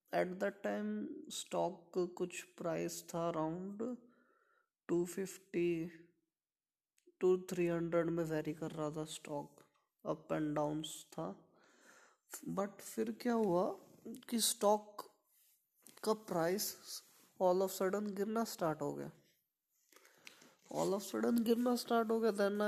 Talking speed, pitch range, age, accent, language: 125 wpm, 165-215 Hz, 20-39, native, Hindi